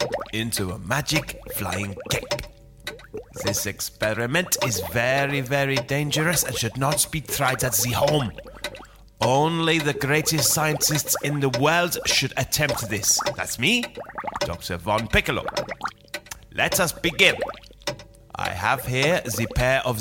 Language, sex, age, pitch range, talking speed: English, male, 30-49, 115-150 Hz, 130 wpm